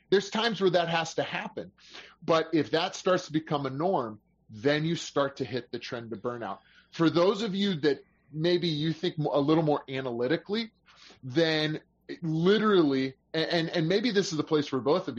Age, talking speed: 30-49, 190 wpm